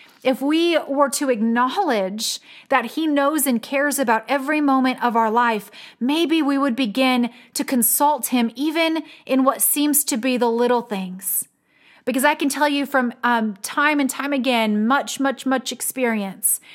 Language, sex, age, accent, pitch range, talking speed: English, female, 30-49, American, 235-280 Hz, 170 wpm